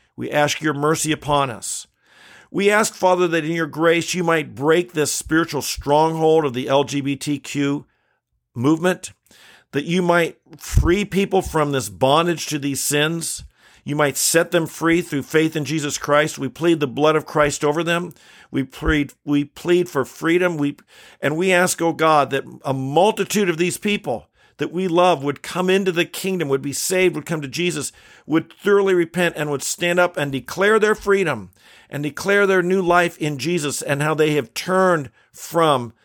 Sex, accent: male, American